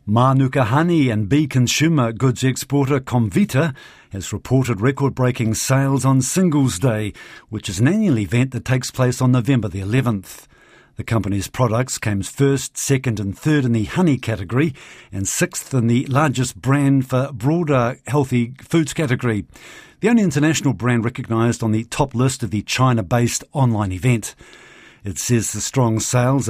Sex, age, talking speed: male, 50-69, 155 wpm